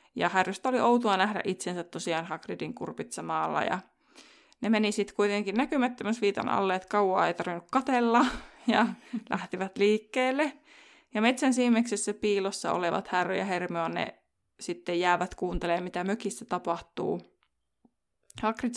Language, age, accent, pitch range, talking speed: Finnish, 20-39, native, 185-235 Hz, 125 wpm